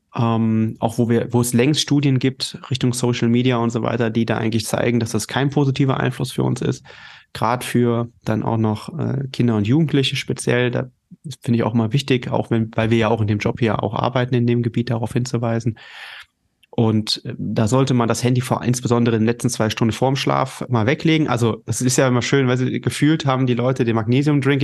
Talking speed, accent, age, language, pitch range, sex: 225 wpm, German, 30-49, German, 115-135 Hz, male